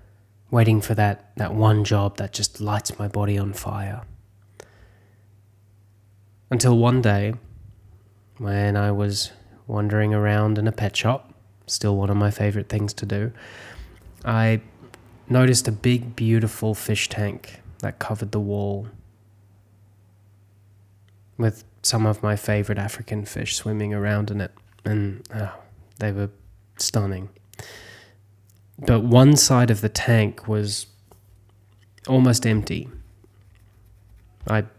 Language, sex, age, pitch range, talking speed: English, male, 20-39, 100-110 Hz, 120 wpm